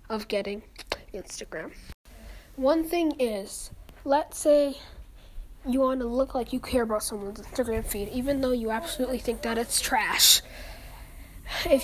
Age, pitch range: 10-29, 220-265 Hz